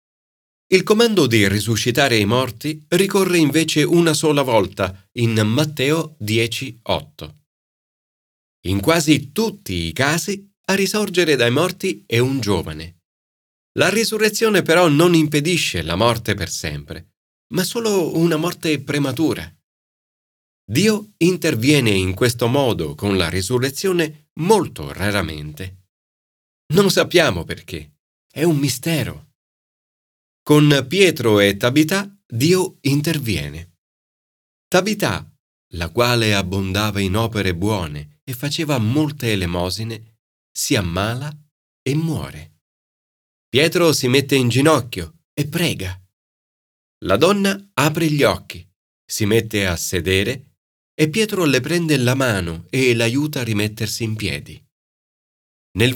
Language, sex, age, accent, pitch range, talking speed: Italian, male, 40-59, native, 95-160 Hz, 115 wpm